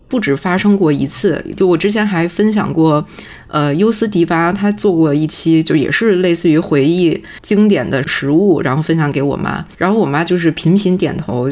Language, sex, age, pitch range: Chinese, female, 20-39, 155-210 Hz